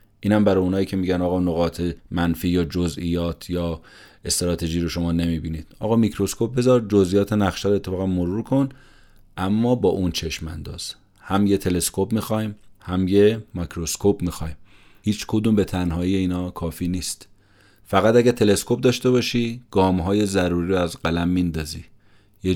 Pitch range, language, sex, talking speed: 85-105 Hz, Persian, male, 150 wpm